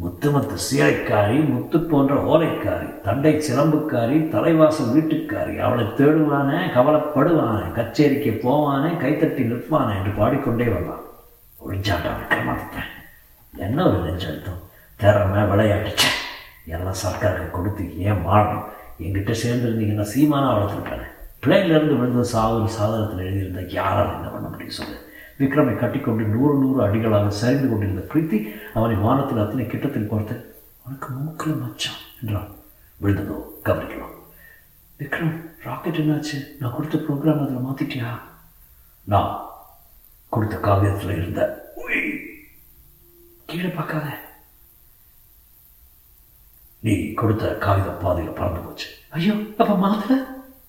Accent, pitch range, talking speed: native, 105-150 Hz, 65 wpm